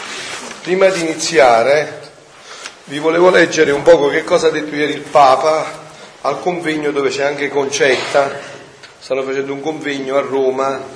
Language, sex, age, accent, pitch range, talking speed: Italian, male, 40-59, native, 135-175 Hz, 150 wpm